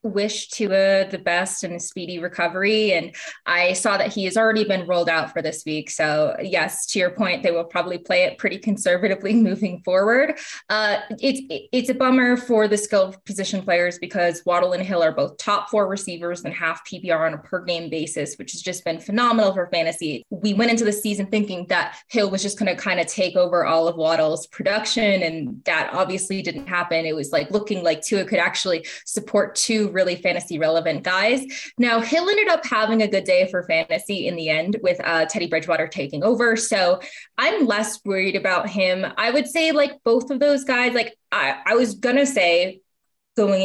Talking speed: 205 wpm